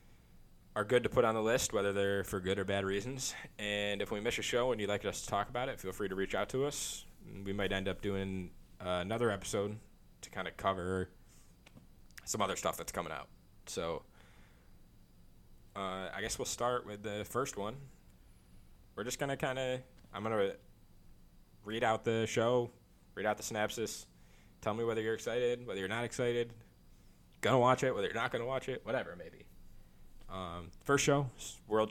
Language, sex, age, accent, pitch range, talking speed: English, male, 20-39, American, 90-110 Hz, 190 wpm